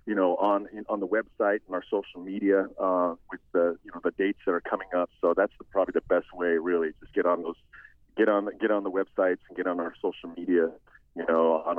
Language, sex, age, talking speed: English, male, 40-59, 240 wpm